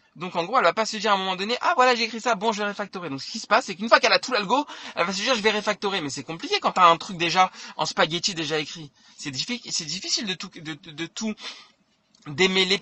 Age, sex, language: 20-39, male, French